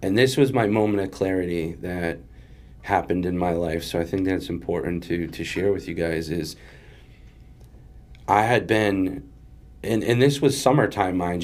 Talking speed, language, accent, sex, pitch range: 175 wpm, English, American, male, 90-120 Hz